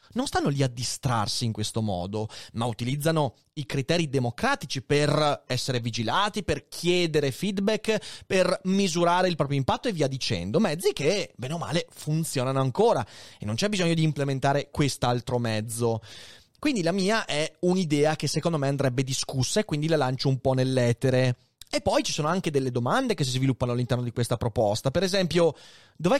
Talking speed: 175 wpm